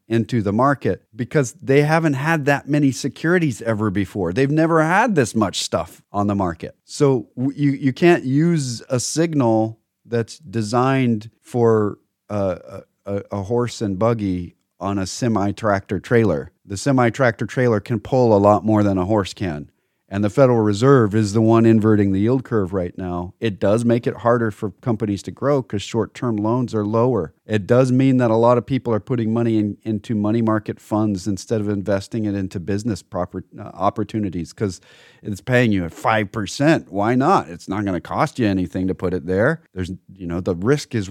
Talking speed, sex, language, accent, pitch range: 190 wpm, male, English, American, 105-130 Hz